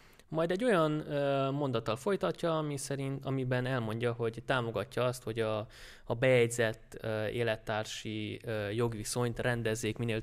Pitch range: 110-135 Hz